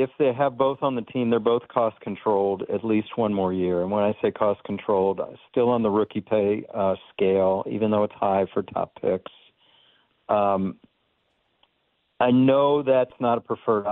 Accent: American